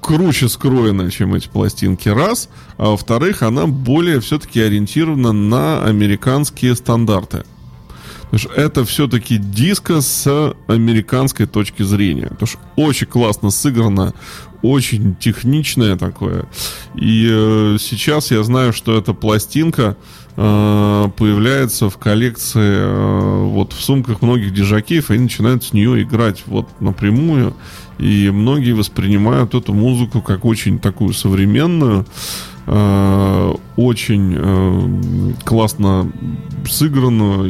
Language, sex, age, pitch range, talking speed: Russian, male, 20-39, 105-125 Hz, 100 wpm